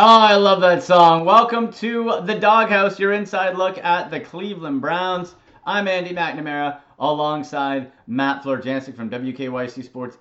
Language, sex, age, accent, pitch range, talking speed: English, male, 30-49, American, 125-175 Hz, 145 wpm